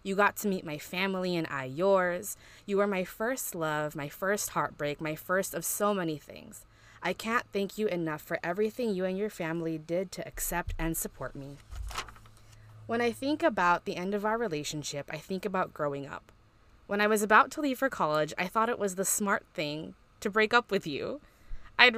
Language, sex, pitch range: English, female, 155-210 Hz